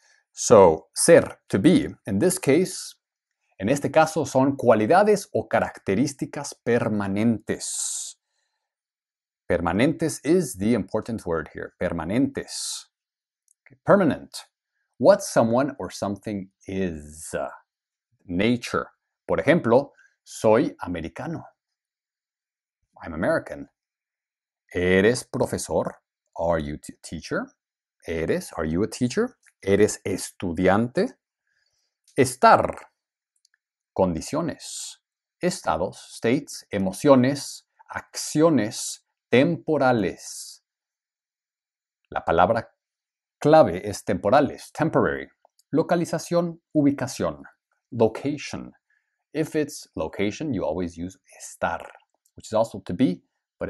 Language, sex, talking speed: English, male, 85 wpm